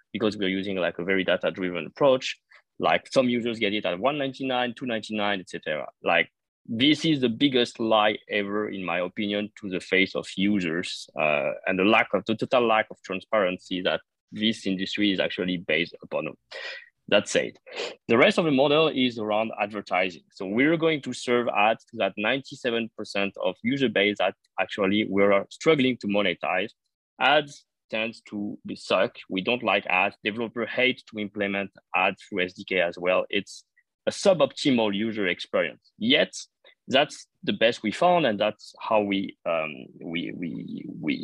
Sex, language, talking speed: male, English, 160 wpm